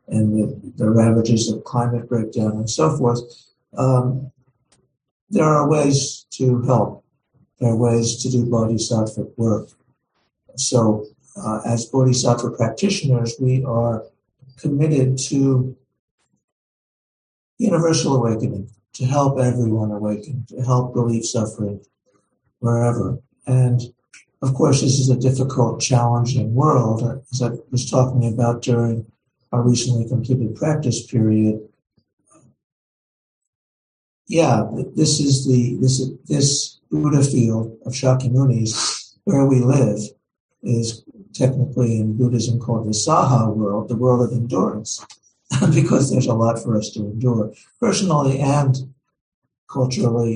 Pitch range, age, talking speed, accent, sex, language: 115-130 Hz, 60-79, 120 wpm, American, male, English